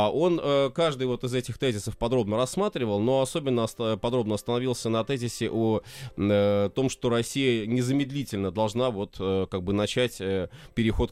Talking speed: 115 wpm